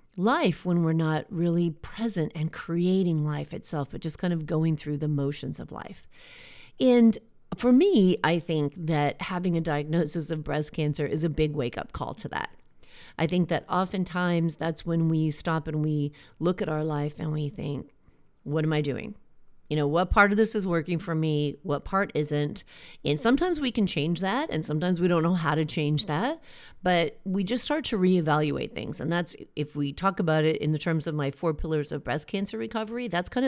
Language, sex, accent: English, female, American